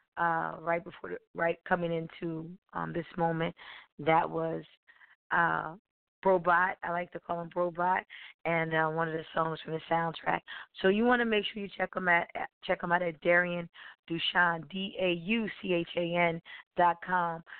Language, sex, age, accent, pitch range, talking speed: English, female, 20-39, American, 160-180 Hz, 185 wpm